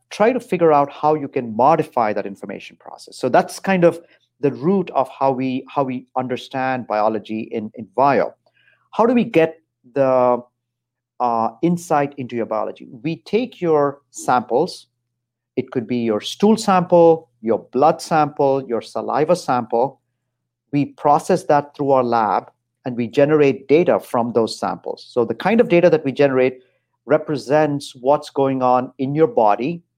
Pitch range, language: 120-155 Hz, English